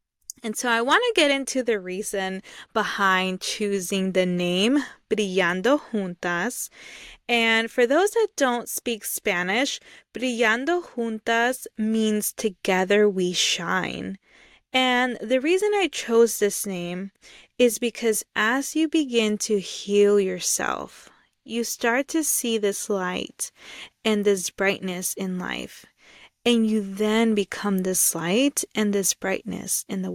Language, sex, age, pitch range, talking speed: English, female, 20-39, 195-240 Hz, 130 wpm